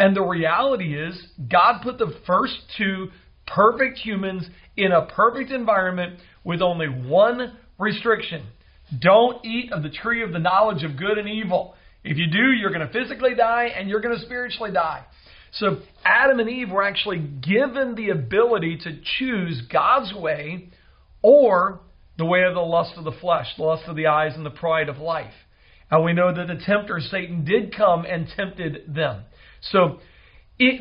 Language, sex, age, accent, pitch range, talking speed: English, male, 40-59, American, 165-225 Hz, 175 wpm